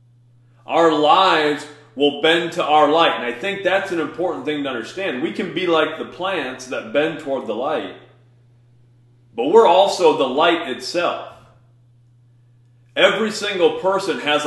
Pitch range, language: 120-165 Hz, English